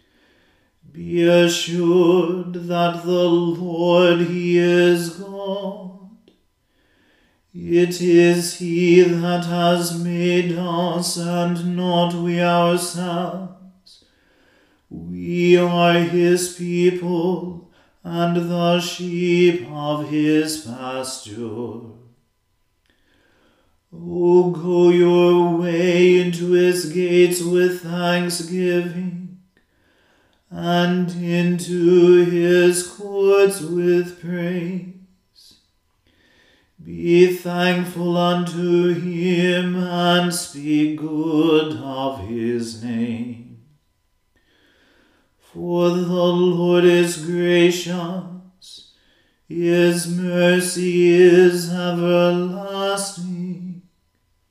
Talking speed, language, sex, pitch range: 70 wpm, English, male, 170-180 Hz